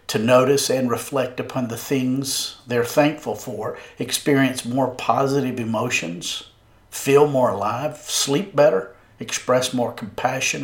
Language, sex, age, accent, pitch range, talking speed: English, male, 50-69, American, 110-140 Hz, 125 wpm